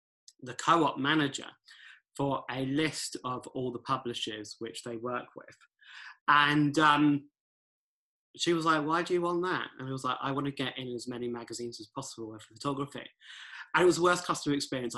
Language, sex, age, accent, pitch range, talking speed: English, male, 20-39, British, 125-150 Hz, 190 wpm